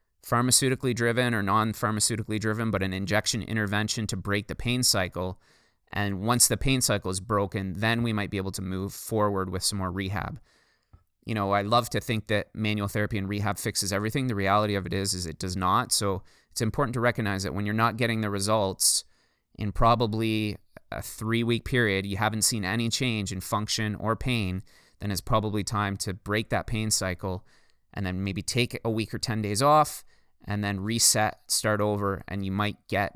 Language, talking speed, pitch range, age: English, 195 wpm, 95-115 Hz, 20-39